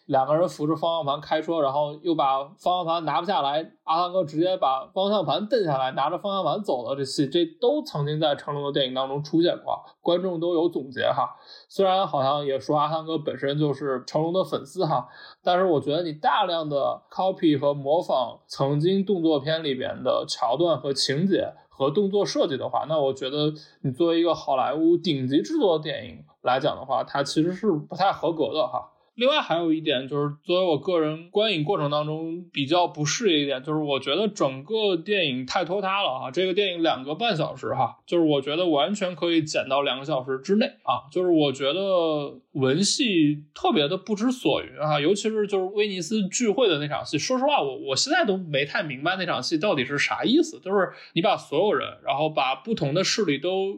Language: Chinese